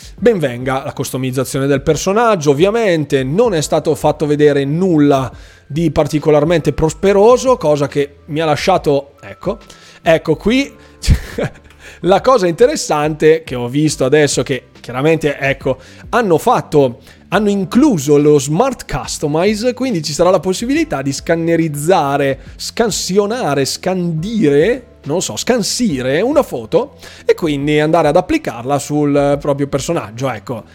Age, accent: 20-39, native